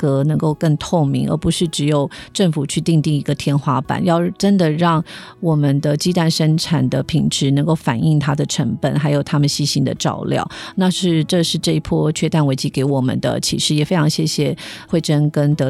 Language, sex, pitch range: Chinese, female, 145-170 Hz